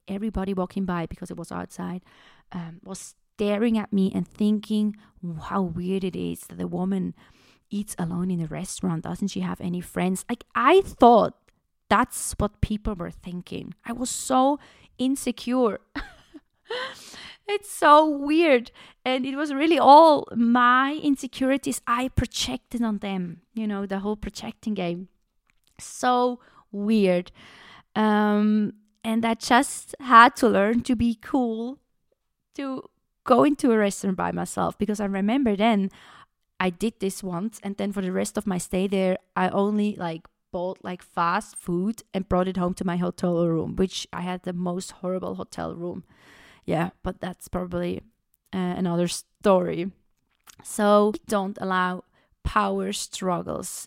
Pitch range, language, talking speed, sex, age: 180-230 Hz, German, 150 wpm, female, 20-39